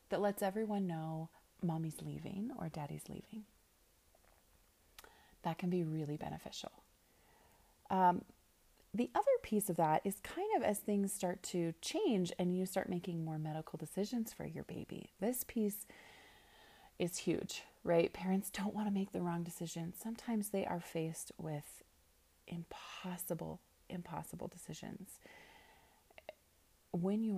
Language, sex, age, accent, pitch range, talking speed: English, female, 30-49, American, 150-195 Hz, 135 wpm